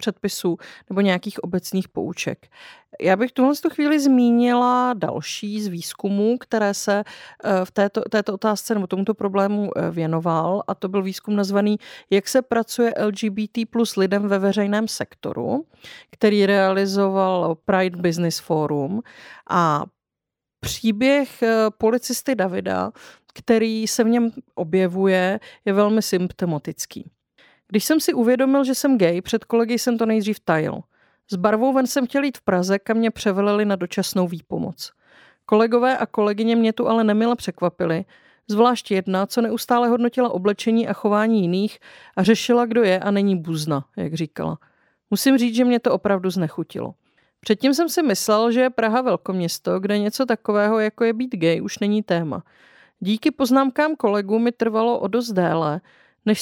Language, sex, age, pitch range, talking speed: Czech, female, 40-59, 195-240 Hz, 150 wpm